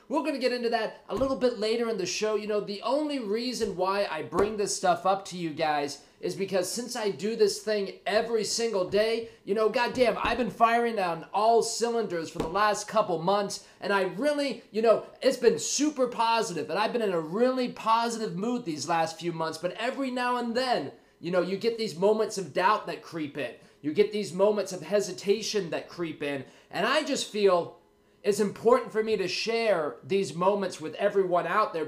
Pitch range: 180-230 Hz